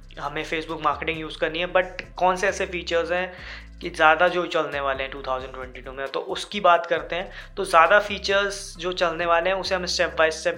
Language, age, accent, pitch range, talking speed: Hindi, 20-39, native, 145-180 Hz, 210 wpm